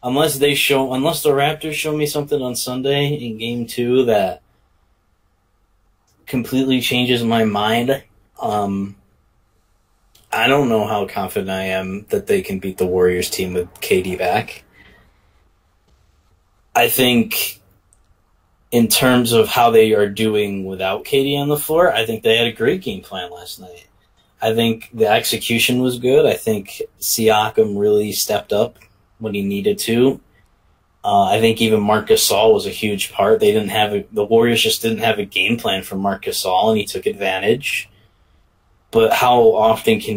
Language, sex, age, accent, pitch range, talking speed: English, male, 20-39, American, 95-130 Hz, 160 wpm